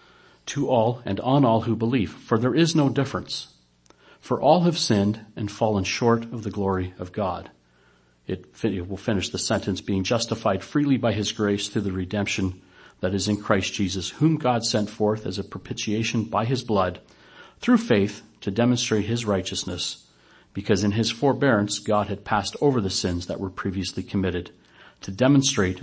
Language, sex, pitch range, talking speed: English, male, 95-115 Hz, 175 wpm